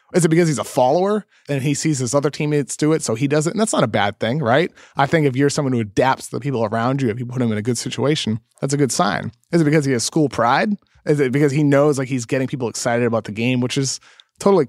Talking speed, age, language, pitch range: 295 wpm, 30-49, English, 125-155 Hz